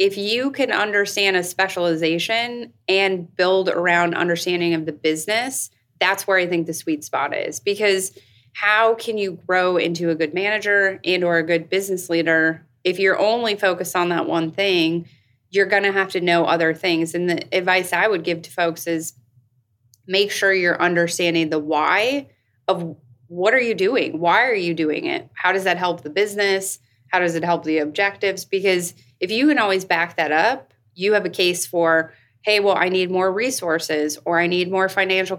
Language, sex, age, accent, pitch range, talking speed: English, female, 20-39, American, 165-195 Hz, 190 wpm